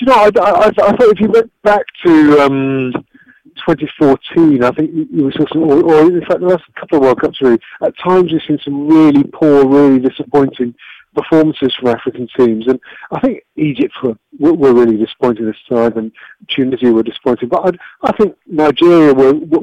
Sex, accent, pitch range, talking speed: male, British, 135-160 Hz, 190 wpm